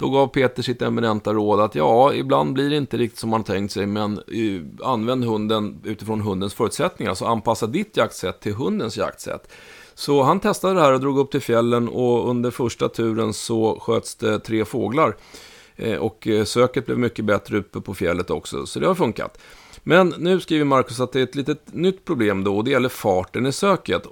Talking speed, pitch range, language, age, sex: 200 wpm, 105-135 Hz, Swedish, 30-49, male